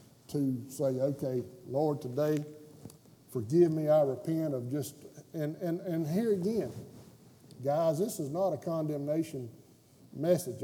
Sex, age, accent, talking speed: male, 50-69, American, 130 wpm